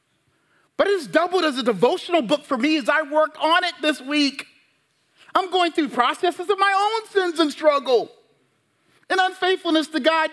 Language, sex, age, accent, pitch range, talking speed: English, male, 40-59, American, 225-350 Hz, 175 wpm